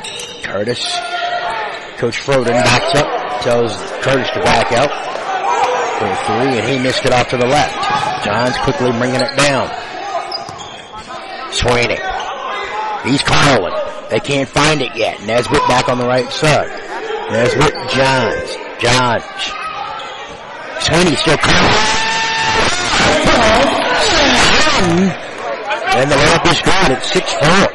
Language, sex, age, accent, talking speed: English, male, 50-69, American, 110 wpm